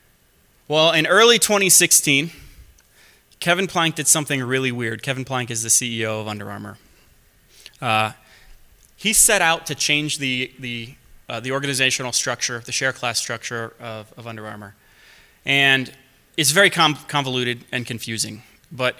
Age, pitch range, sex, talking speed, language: 20-39, 115-150 Hz, male, 145 wpm, English